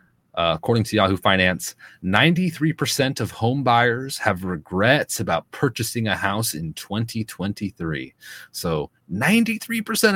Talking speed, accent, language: 105 wpm, American, English